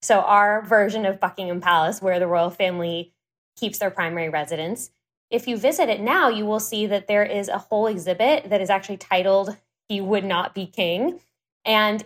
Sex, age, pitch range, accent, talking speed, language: female, 10-29, 180-210 Hz, American, 190 wpm, English